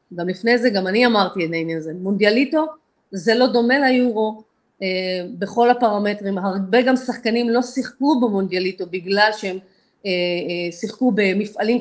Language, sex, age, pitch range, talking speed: Hebrew, female, 30-49, 185-250 Hz, 140 wpm